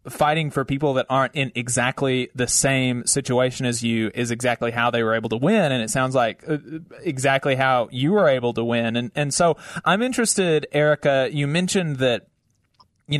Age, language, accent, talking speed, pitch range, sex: 30-49, English, American, 185 wpm, 125-145 Hz, male